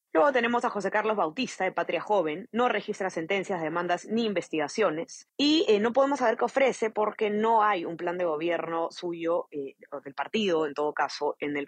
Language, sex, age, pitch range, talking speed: Spanish, female, 20-39, 155-220 Hz, 195 wpm